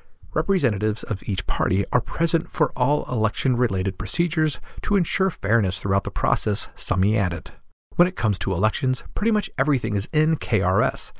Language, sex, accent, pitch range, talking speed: English, male, American, 100-155 Hz, 160 wpm